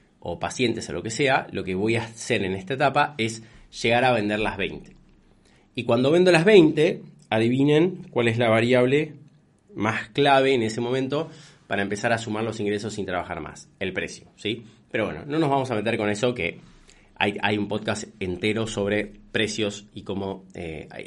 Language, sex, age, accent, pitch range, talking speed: Spanish, male, 20-39, Argentinian, 105-150 Hz, 190 wpm